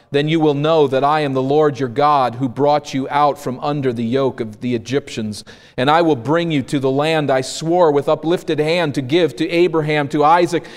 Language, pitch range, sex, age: English, 125-165 Hz, male, 40-59